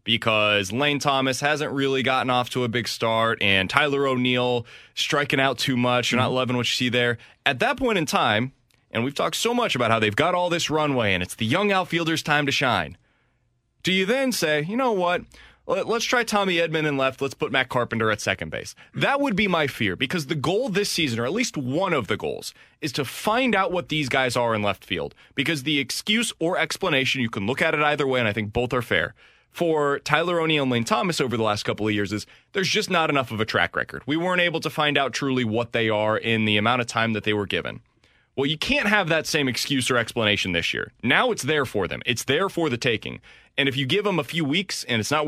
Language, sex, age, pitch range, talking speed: English, male, 20-39, 115-160 Hz, 250 wpm